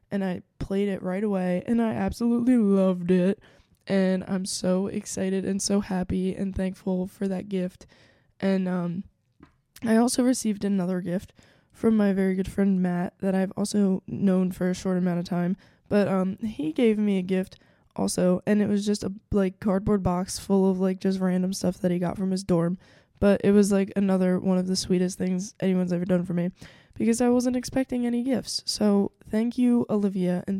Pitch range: 185-205 Hz